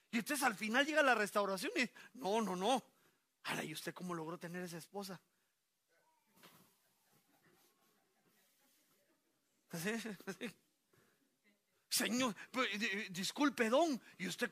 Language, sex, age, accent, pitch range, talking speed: Spanish, male, 40-59, Mexican, 175-230 Hz, 115 wpm